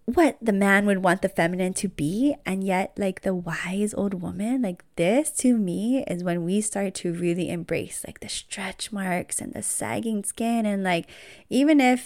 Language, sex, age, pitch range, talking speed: English, female, 20-39, 175-210 Hz, 195 wpm